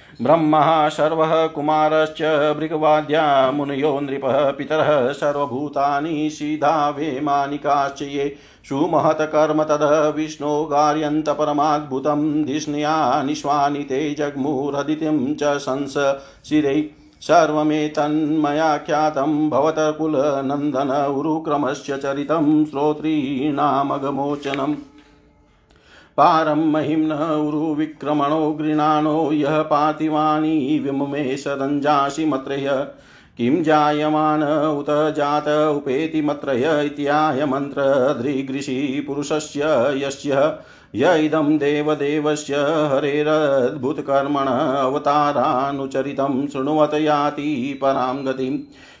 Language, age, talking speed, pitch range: Hindi, 50-69, 55 wpm, 140-155 Hz